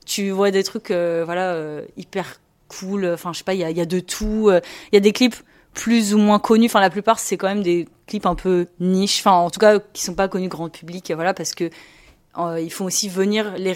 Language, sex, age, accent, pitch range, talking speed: French, female, 30-49, French, 170-210 Hz, 260 wpm